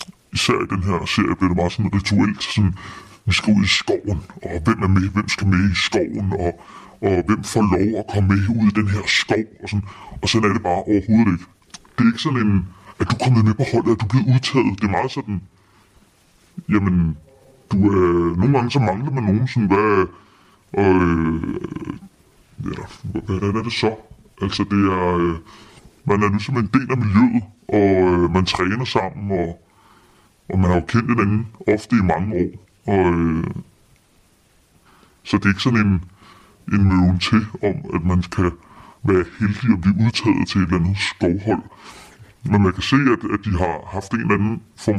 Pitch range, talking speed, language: 95-110 Hz, 200 wpm, Danish